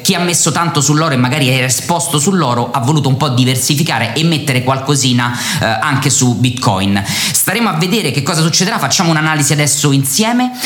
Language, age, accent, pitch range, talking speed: Italian, 20-39, native, 125-165 Hz, 180 wpm